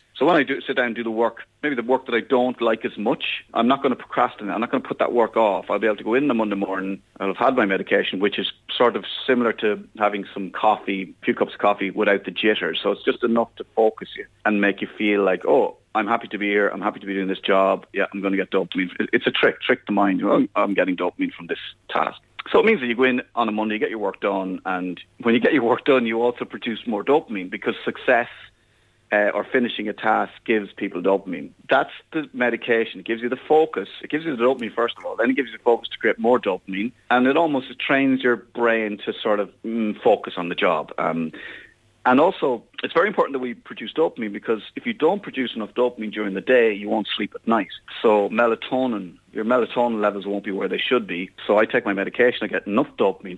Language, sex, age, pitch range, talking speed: English, male, 30-49, 100-120 Hz, 255 wpm